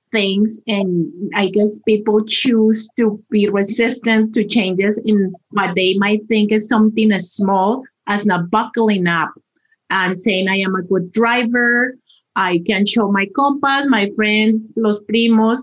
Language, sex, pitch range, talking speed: Spanish, female, 200-235 Hz, 155 wpm